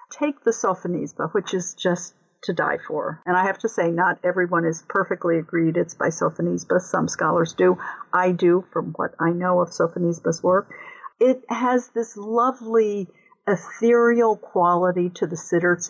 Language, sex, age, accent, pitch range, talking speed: English, female, 50-69, American, 170-245 Hz, 165 wpm